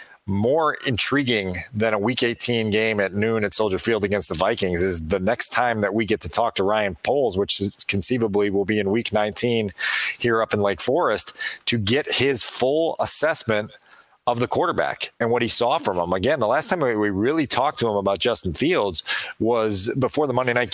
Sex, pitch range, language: male, 105-125 Hz, English